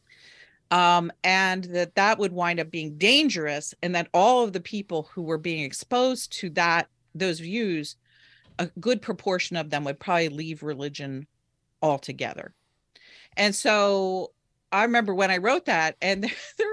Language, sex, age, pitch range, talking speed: English, female, 40-59, 160-215 Hz, 155 wpm